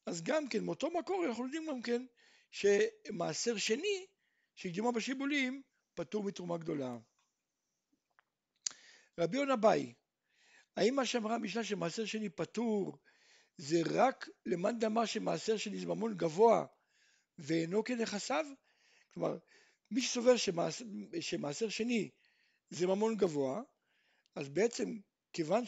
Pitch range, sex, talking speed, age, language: 190-295 Hz, male, 105 wpm, 60-79, Hebrew